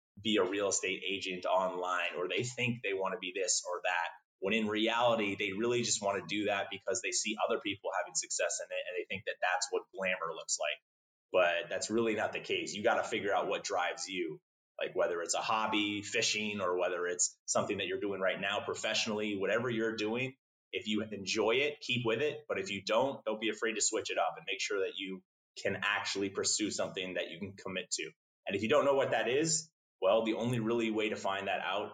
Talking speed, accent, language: 235 wpm, American, English